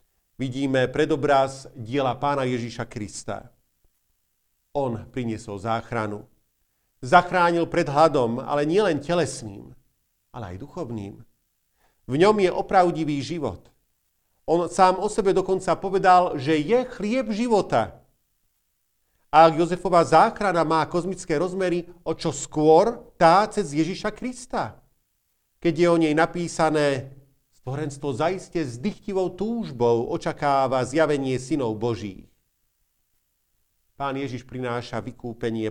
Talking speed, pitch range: 110 wpm, 115-165 Hz